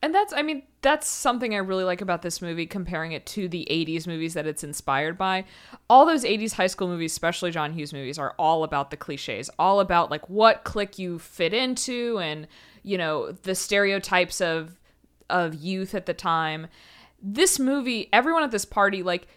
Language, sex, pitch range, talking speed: English, female, 170-235 Hz, 195 wpm